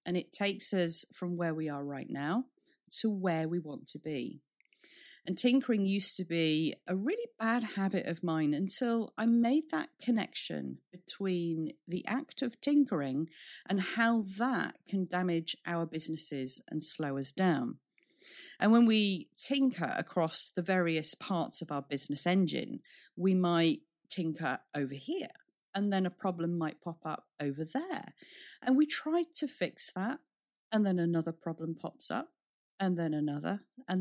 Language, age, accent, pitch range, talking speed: English, 40-59, British, 165-245 Hz, 160 wpm